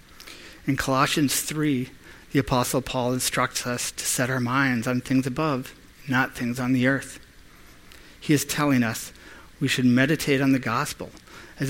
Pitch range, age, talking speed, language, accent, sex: 115-140 Hz, 50-69, 160 wpm, English, American, male